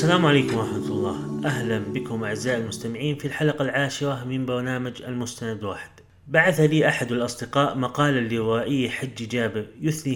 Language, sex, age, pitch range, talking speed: Arabic, male, 30-49, 120-145 Hz, 140 wpm